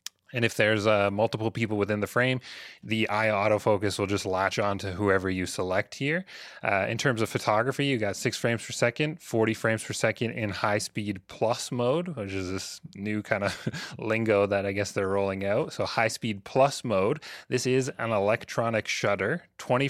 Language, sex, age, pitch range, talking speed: English, male, 30-49, 105-125 Hz, 195 wpm